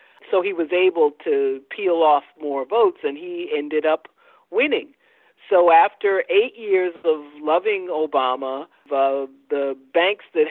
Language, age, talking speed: English, 50-69, 145 wpm